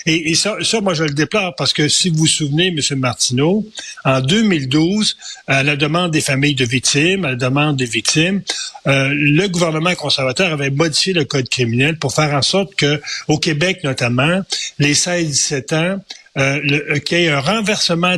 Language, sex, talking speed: French, male, 180 wpm